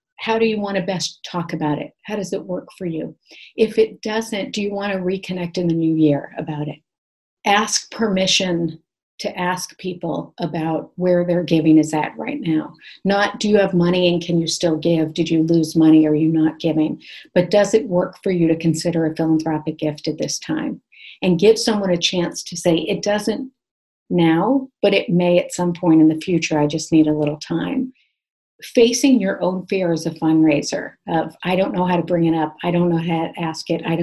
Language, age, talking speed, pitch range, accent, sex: English, 50-69, 220 wpm, 160-195 Hz, American, female